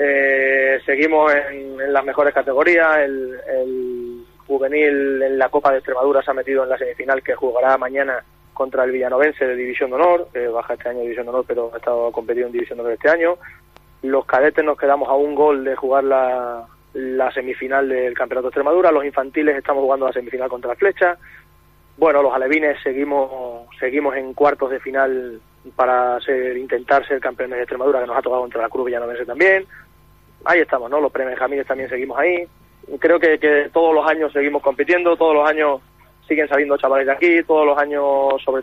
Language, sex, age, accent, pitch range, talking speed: Spanish, male, 20-39, Spanish, 125-145 Hz, 195 wpm